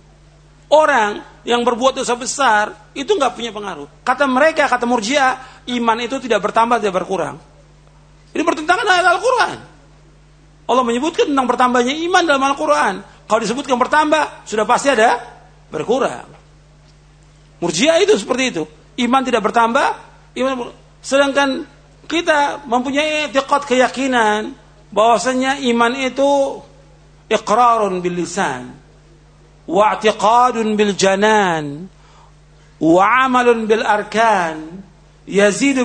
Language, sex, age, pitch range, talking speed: Indonesian, male, 50-69, 175-270 Hz, 100 wpm